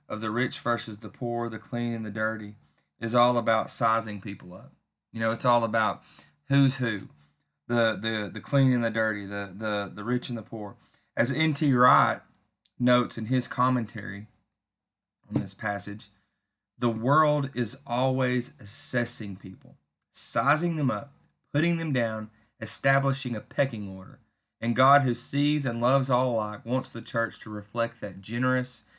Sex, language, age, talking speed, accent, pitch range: male, English, 30-49, 165 wpm, American, 105-125 Hz